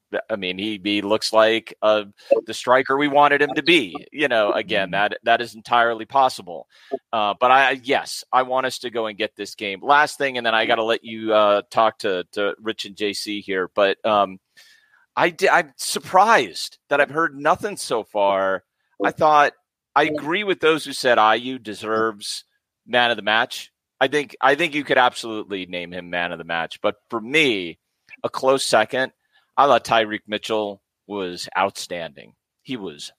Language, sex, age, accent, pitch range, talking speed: English, male, 30-49, American, 105-140 Hz, 190 wpm